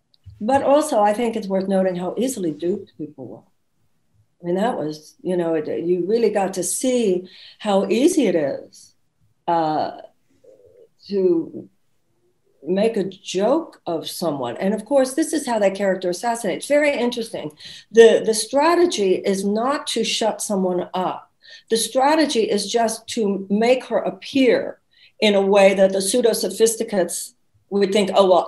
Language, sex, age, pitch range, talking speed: English, female, 60-79, 175-225 Hz, 160 wpm